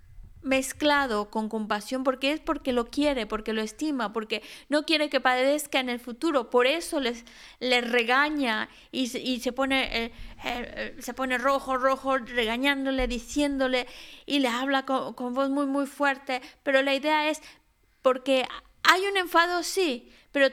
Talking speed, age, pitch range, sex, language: 165 wpm, 30-49, 230-285 Hz, female, Spanish